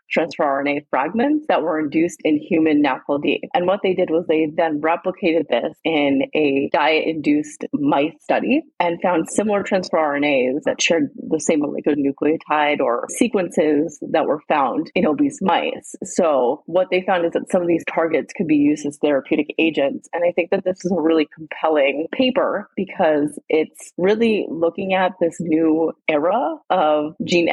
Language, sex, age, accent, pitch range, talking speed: English, female, 30-49, American, 155-185 Hz, 170 wpm